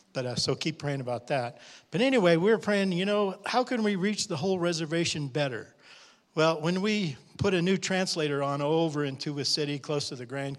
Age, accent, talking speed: 50-69, American, 210 wpm